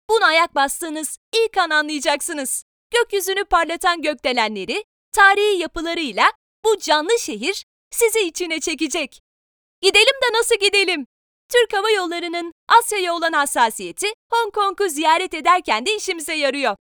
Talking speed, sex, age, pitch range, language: 120 wpm, female, 30-49, 315-410 Hz, Turkish